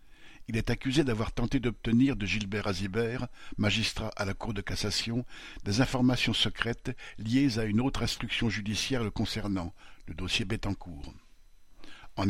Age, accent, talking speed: 60-79, French, 145 wpm